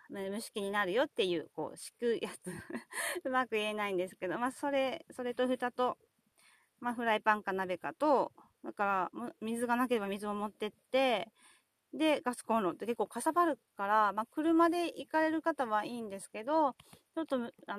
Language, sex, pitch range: Japanese, female, 200-265 Hz